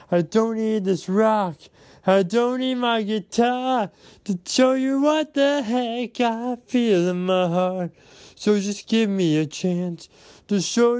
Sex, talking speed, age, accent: male, 160 wpm, 20-39, American